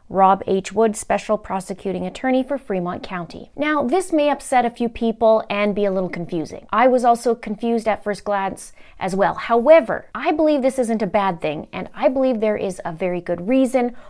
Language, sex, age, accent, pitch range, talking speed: English, female, 30-49, American, 200-270 Hz, 200 wpm